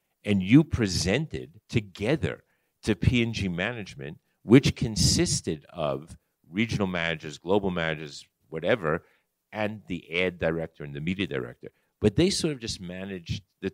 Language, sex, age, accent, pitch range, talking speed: English, male, 50-69, American, 85-110 Hz, 130 wpm